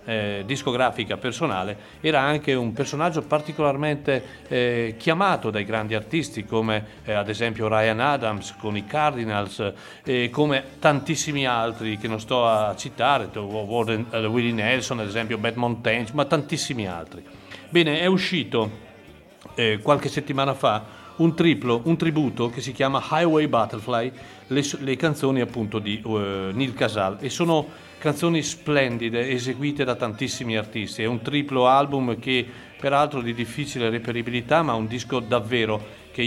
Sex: male